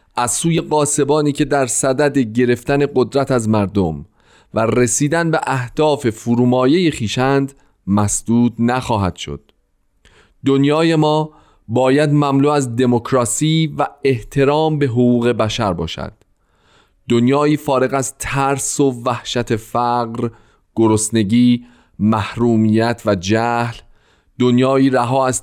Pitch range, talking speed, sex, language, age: 110-140 Hz, 105 wpm, male, Persian, 30-49